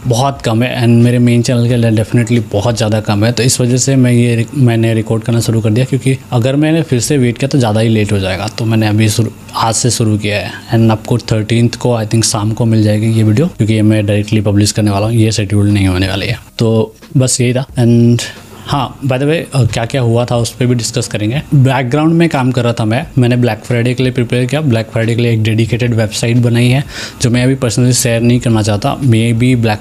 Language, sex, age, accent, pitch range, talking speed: Hindi, male, 20-39, native, 110-125 Hz, 250 wpm